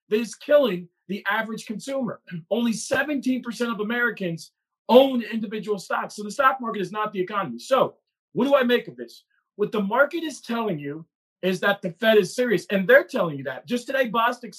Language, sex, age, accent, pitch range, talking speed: English, male, 40-59, American, 185-240 Hz, 200 wpm